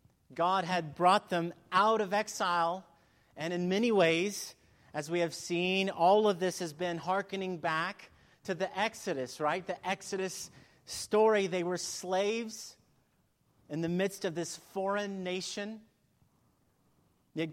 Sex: male